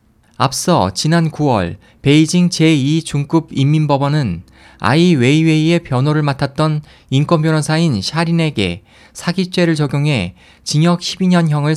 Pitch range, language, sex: 125-165 Hz, Korean, male